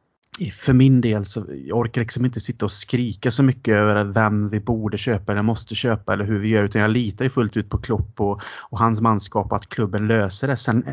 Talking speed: 225 wpm